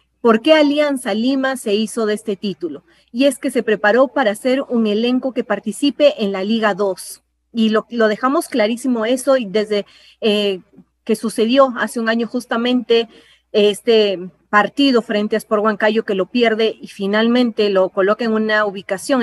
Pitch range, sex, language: 210-255 Hz, female, Spanish